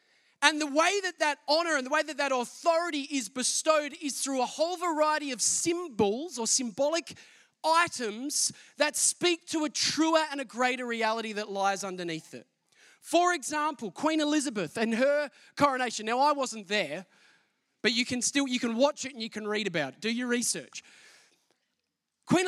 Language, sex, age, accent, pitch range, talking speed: English, male, 20-39, Australian, 250-320 Hz, 170 wpm